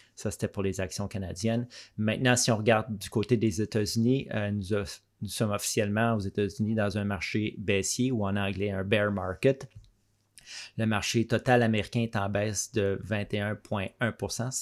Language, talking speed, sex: French, 160 wpm, male